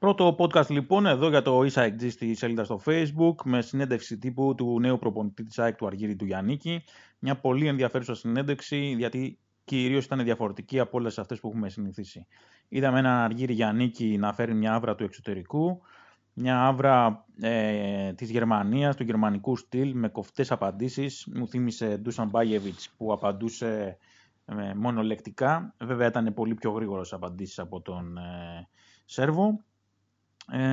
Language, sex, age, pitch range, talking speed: Greek, male, 20-39, 105-135 Hz, 145 wpm